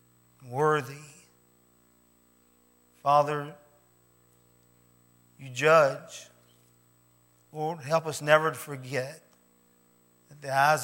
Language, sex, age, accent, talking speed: English, male, 50-69, American, 70 wpm